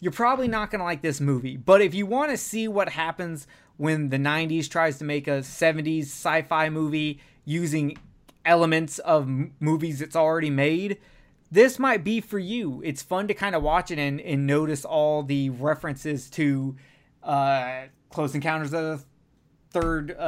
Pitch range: 145-185 Hz